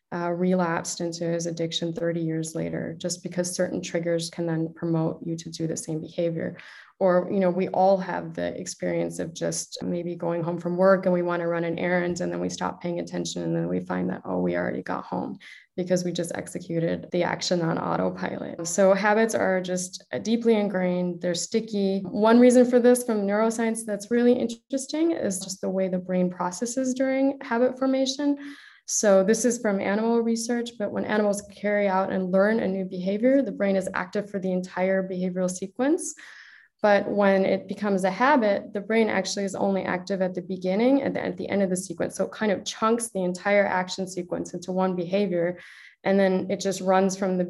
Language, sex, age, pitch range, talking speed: English, female, 20-39, 175-205 Hz, 205 wpm